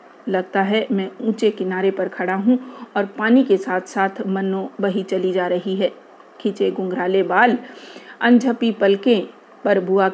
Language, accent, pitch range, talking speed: Hindi, native, 185-225 Hz, 155 wpm